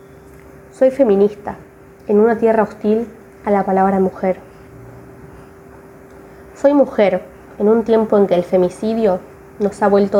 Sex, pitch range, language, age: female, 180-215 Hz, Spanish, 20-39